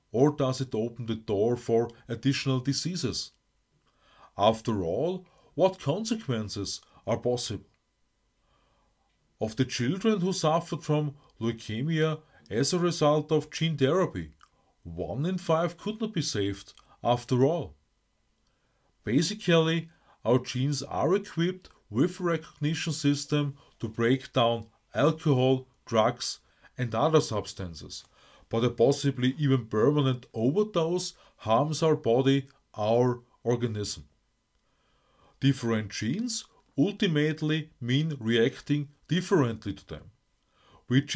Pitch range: 115-155 Hz